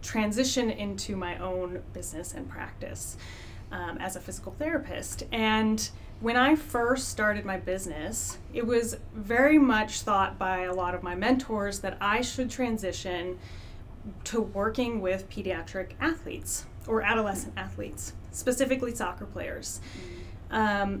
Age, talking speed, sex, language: 30-49, 130 wpm, female, English